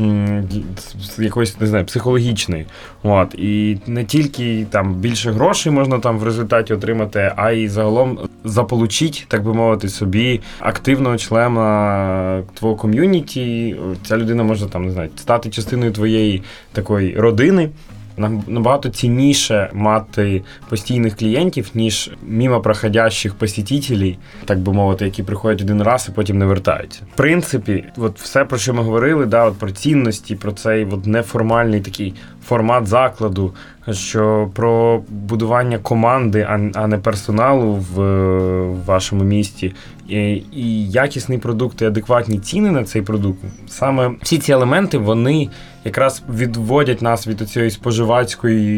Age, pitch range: 20-39, 105-120 Hz